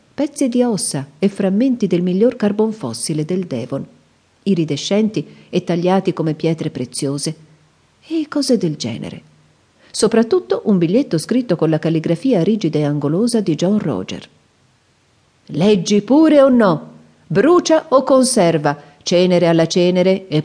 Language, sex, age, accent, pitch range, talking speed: Italian, female, 40-59, native, 150-215 Hz, 130 wpm